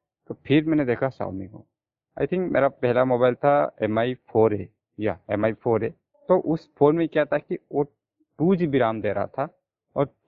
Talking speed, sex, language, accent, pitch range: 185 wpm, male, Hindi, native, 115-150 Hz